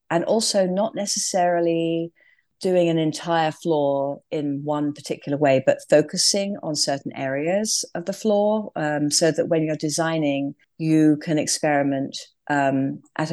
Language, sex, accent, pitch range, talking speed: English, female, British, 140-165 Hz, 140 wpm